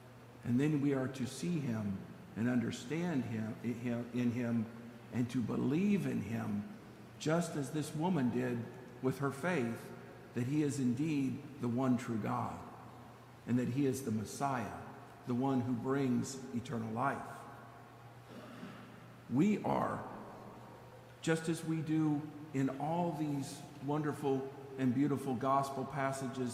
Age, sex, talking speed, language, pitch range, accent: 50-69, male, 140 wpm, English, 120-145 Hz, American